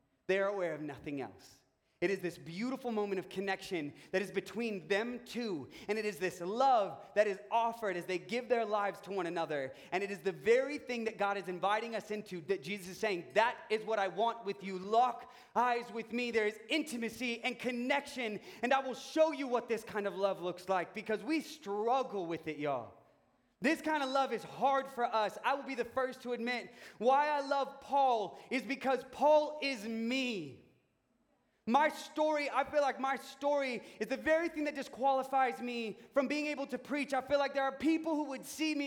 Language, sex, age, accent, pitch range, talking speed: English, male, 30-49, American, 220-285 Hz, 210 wpm